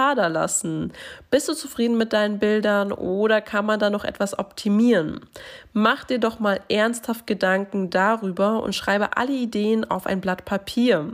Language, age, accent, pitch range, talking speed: German, 20-39, German, 190-230 Hz, 150 wpm